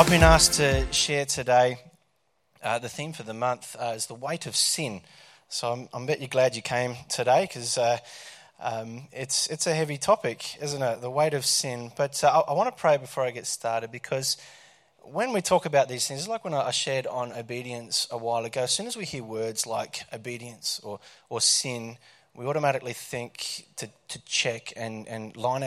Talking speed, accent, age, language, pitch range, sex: 205 wpm, Australian, 20-39, English, 115-135 Hz, male